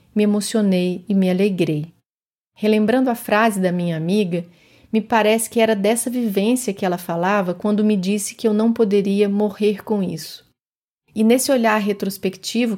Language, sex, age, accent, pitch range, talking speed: Portuguese, female, 30-49, Brazilian, 185-225 Hz, 160 wpm